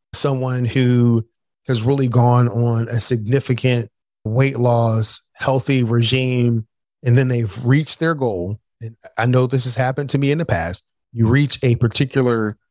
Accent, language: American, English